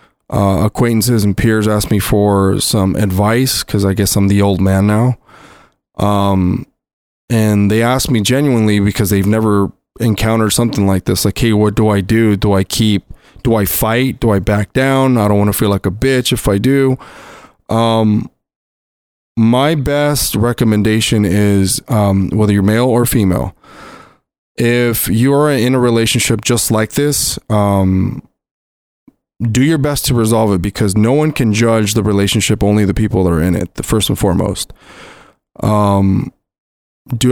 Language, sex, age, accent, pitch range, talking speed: English, male, 20-39, American, 100-120 Hz, 165 wpm